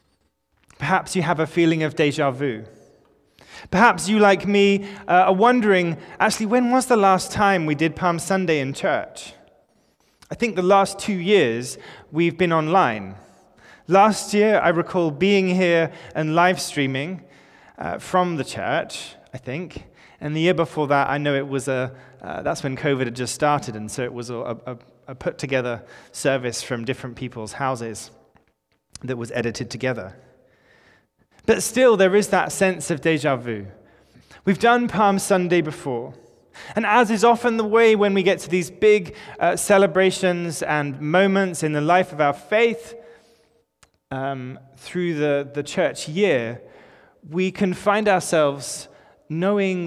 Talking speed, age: 160 wpm, 20-39